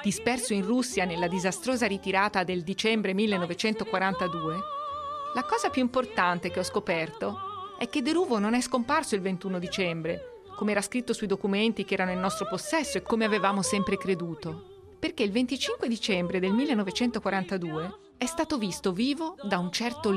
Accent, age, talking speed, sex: native, 40-59, 160 wpm, female